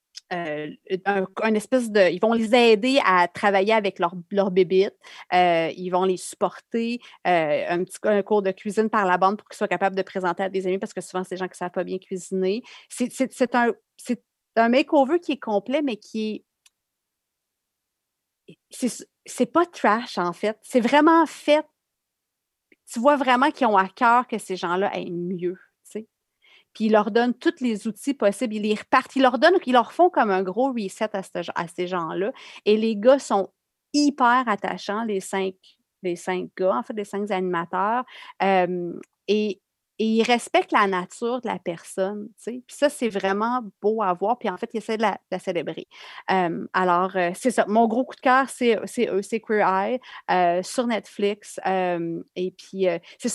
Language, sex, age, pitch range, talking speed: French, female, 30-49, 190-245 Hz, 195 wpm